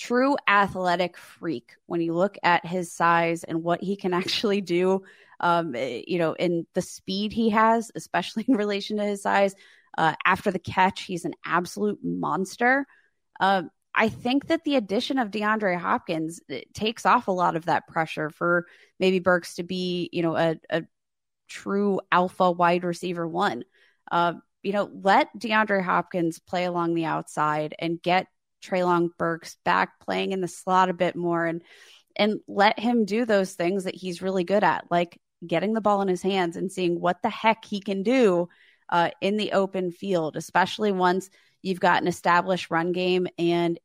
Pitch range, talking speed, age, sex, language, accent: 175-205 Hz, 180 wpm, 20-39, female, English, American